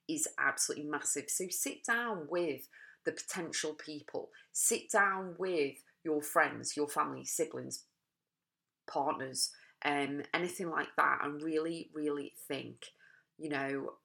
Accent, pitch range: British, 150-185 Hz